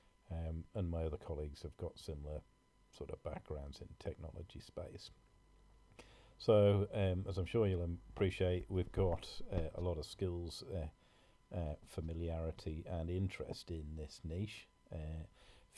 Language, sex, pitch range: English, male, 80-100 Hz